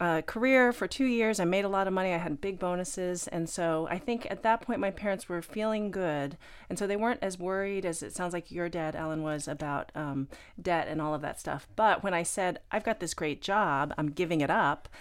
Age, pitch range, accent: 40-59, 165-215 Hz, American